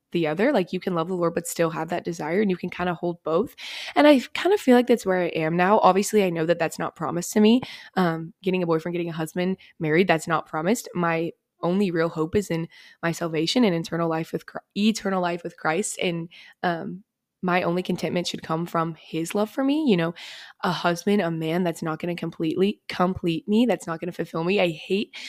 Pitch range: 170-200 Hz